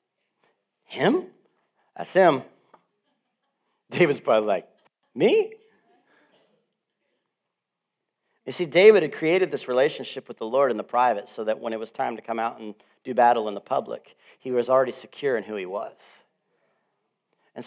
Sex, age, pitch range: male, 40-59, 115-145 Hz